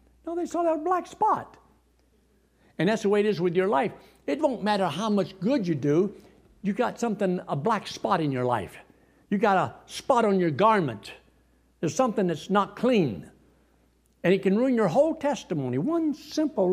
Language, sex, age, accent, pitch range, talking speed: English, male, 60-79, American, 125-200 Hz, 190 wpm